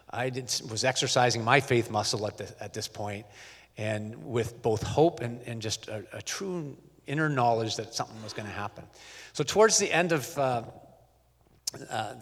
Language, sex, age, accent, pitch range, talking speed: English, male, 40-59, American, 110-140 Hz, 180 wpm